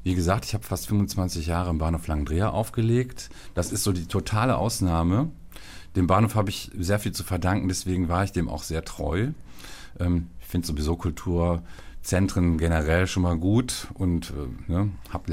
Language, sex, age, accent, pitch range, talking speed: German, male, 40-59, German, 85-105 Hz, 170 wpm